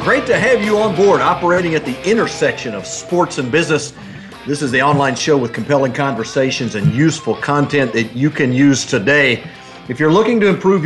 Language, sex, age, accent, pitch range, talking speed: English, male, 50-69, American, 130-165 Hz, 195 wpm